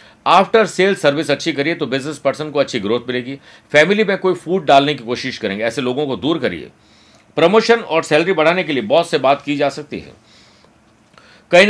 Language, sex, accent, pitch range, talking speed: Hindi, male, native, 130-170 Hz, 200 wpm